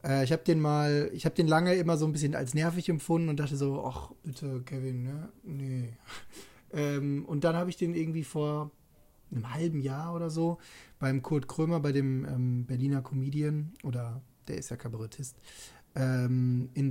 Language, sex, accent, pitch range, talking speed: German, male, German, 125-160 Hz, 180 wpm